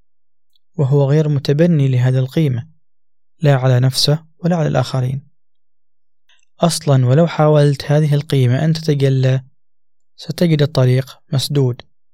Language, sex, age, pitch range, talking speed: Arabic, male, 20-39, 130-155 Hz, 105 wpm